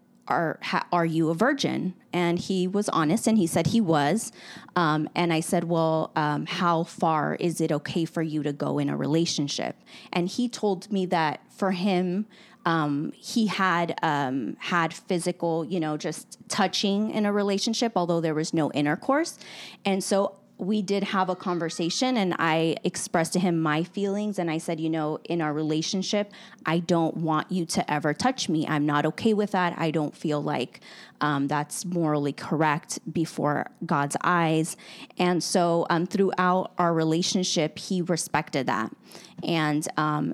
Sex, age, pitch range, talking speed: female, 20-39, 155-185 Hz, 170 wpm